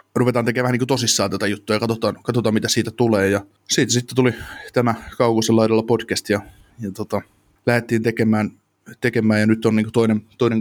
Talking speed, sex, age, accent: 175 wpm, male, 20-39, native